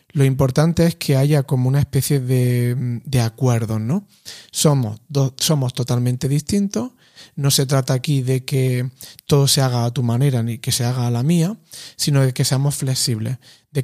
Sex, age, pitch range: male, 30-49, 125-150 Hz